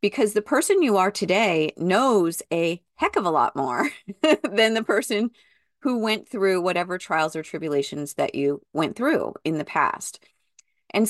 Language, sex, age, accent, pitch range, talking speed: English, female, 30-49, American, 170-220 Hz, 170 wpm